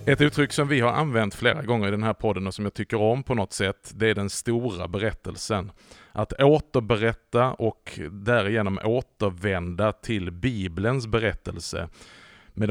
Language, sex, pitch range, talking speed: Swedish, male, 95-120 Hz, 160 wpm